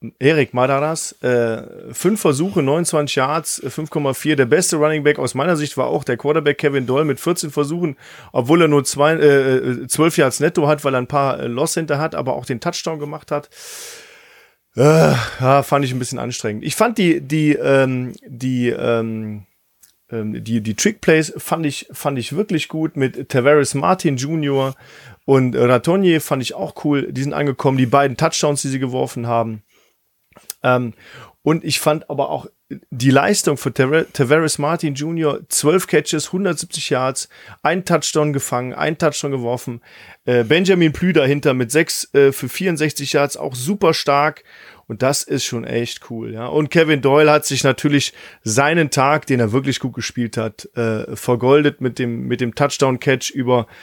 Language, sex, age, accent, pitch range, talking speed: German, male, 40-59, German, 125-155 Hz, 170 wpm